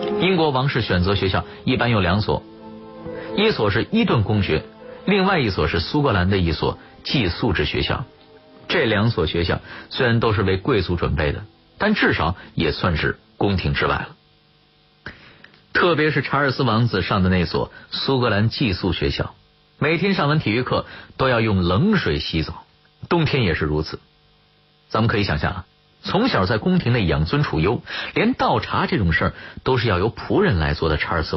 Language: Chinese